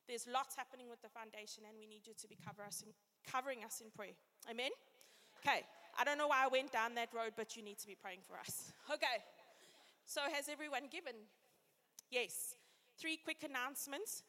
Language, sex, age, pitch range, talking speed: English, female, 20-39, 225-290 Hz, 185 wpm